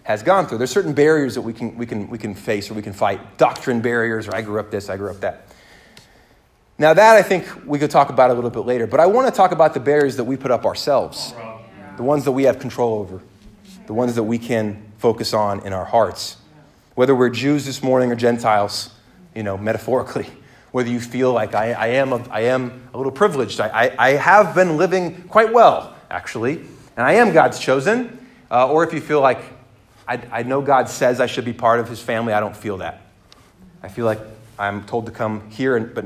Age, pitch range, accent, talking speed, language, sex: 30-49, 110-155 Hz, American, 230 wpm, English, male